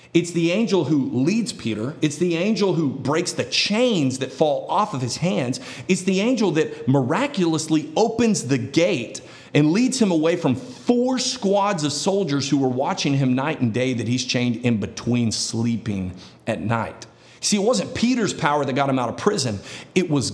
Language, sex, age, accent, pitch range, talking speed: English, male, 40-59, American, 125-180 Hz, 190 wpm